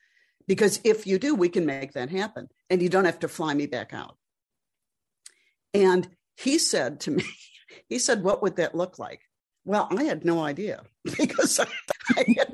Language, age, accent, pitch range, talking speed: English, 60-79, American, 155-195 Hz, 185 wpm